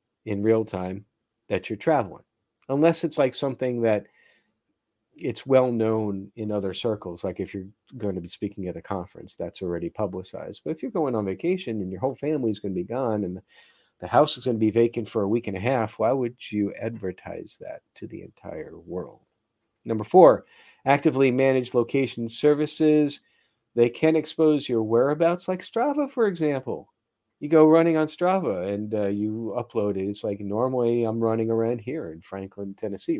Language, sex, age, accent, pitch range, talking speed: English, male, 50-69, American, 105-135 Hz, 185 wpm